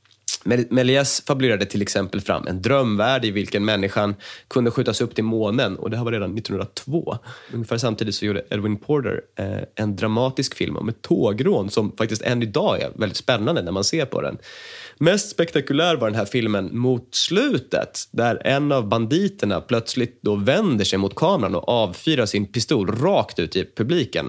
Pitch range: 105-135 Hz